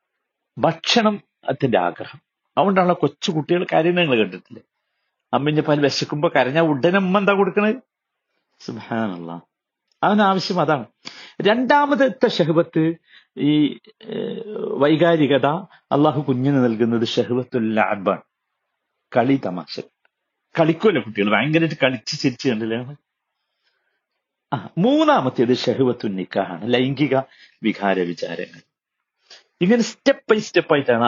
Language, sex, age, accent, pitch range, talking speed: Malayalam, male, 50-69, native, 125-200 Hz, 85 wpm